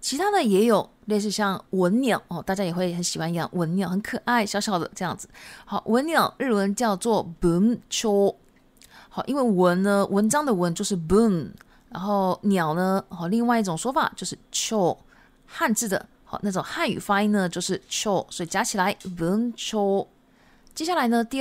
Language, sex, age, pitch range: Japanese, female, 20-39, 190-240 Hz